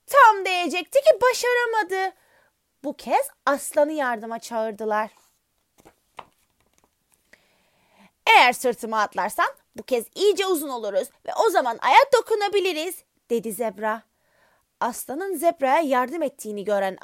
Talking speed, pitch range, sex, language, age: 100 wpm, 245-360 Hz, female, Turkish, 30-49